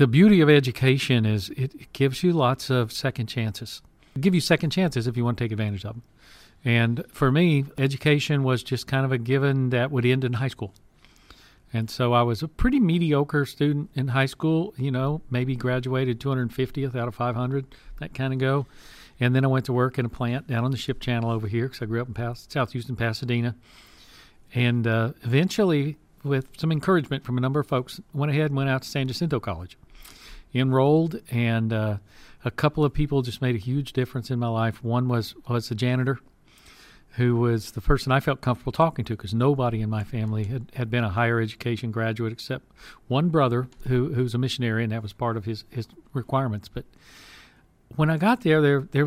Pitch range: 120-140 Hz